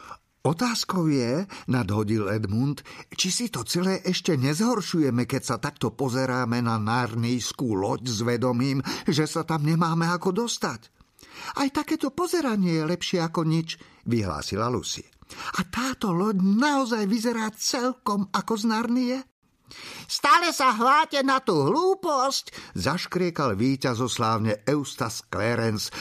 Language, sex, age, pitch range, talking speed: Slovak, male, 50-69, 115-190 Hz, 125 wpm